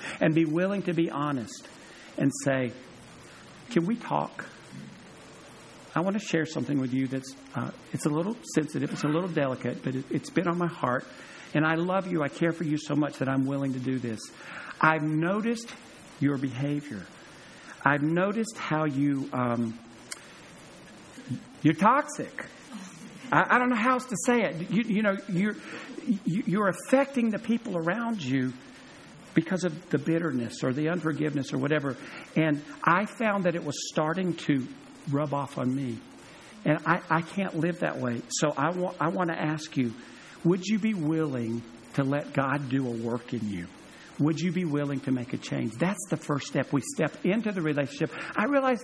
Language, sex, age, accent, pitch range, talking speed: English, male, 50-69, American, 140-185 Hz, 180 wpm